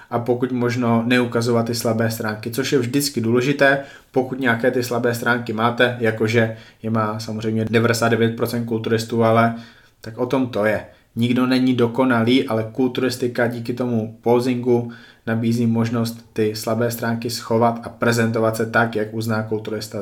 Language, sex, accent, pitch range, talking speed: Czech, male, native, 110-125 Hz, 150 wpm